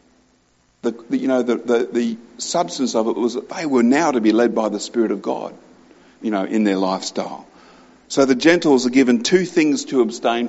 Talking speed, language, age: 210 wpm, English, 50-69